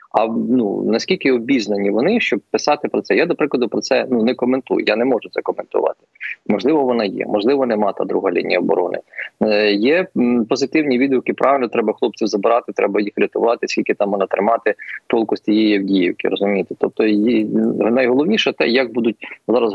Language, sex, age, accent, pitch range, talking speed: Ukrainian, male, 20-39, native, 105-125 Hz, 175 wpm